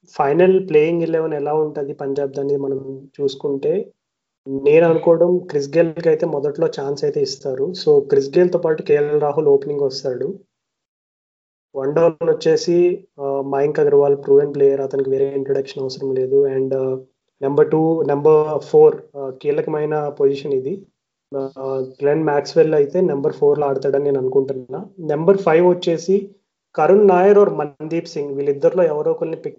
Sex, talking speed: male, 140 wpm